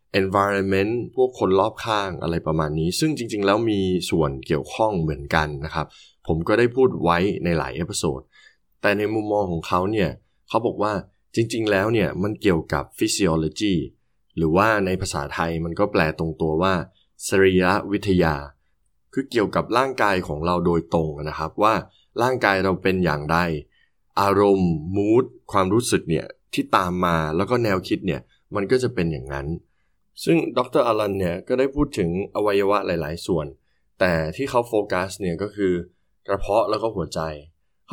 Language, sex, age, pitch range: Thai, male, 20-39, 80-105 Hz